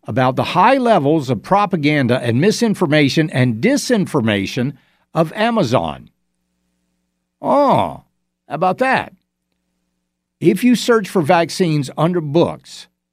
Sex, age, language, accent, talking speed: male, 60-79, English, American, 105 wpm